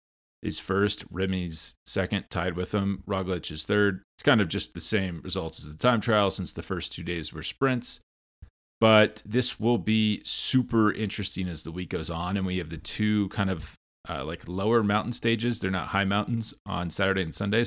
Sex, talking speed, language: male, 200 wpm, English